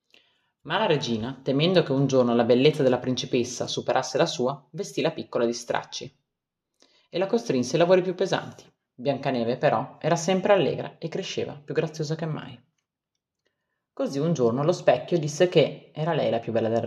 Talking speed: 180 wpm